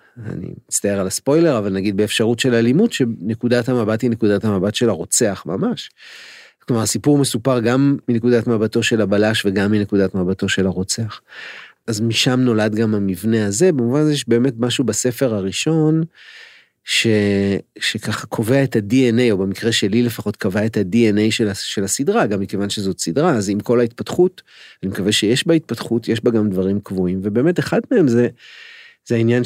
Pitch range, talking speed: 105-130 Hz, 160 wpm